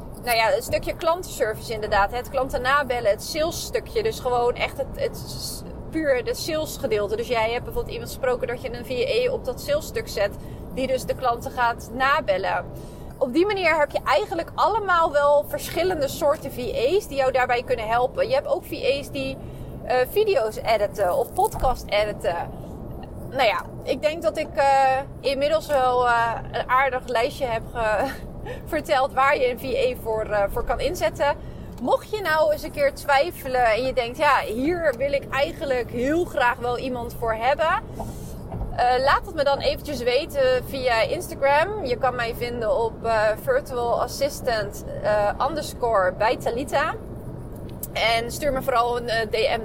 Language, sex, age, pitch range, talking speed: Dutch, female, 30-49, 245-325 Hz, 175 wpm